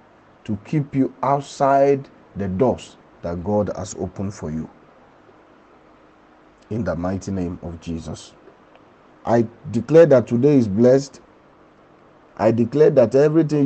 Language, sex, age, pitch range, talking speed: English, male, 50-69, 105-135 Hz, 125 wpm